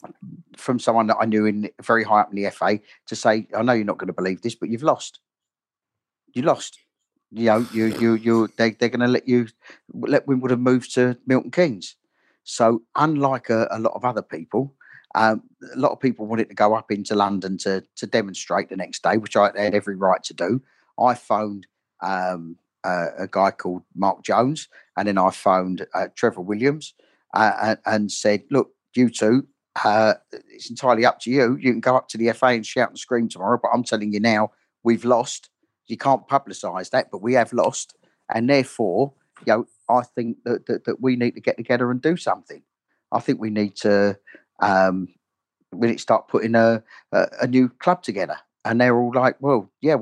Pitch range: 105-125 Hz